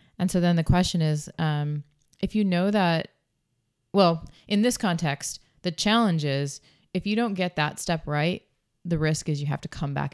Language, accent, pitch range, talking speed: English, American, 145-165 Hz, 195 wpm